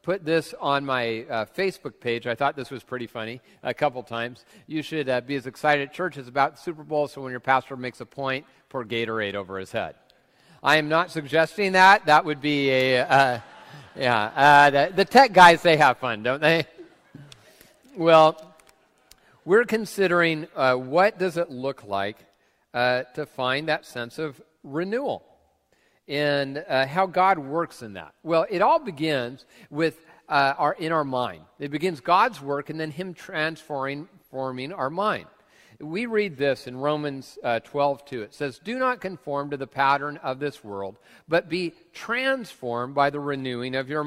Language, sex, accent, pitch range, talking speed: English, male, American, 130-165 Hz, 180 wpm